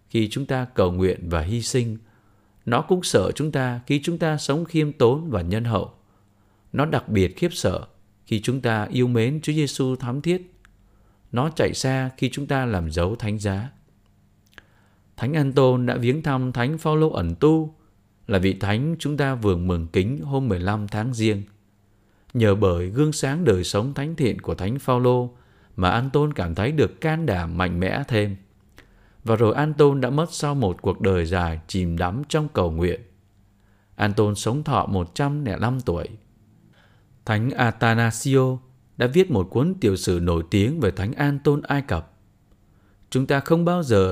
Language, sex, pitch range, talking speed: Vietnamese, male, 100-135 Hz, 180 wpm